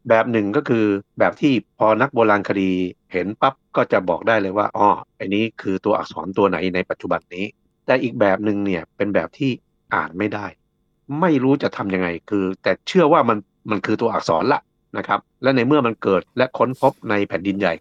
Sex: male